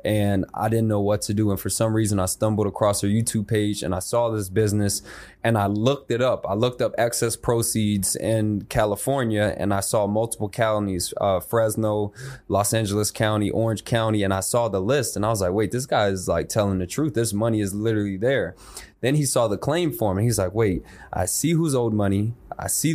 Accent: American